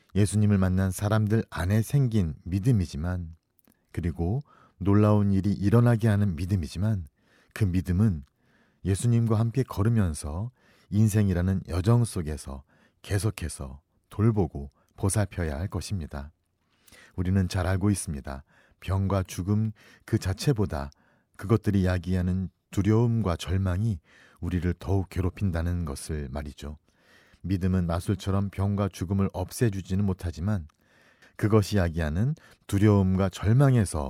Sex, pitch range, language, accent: male, 85-105 Hz, Korean, native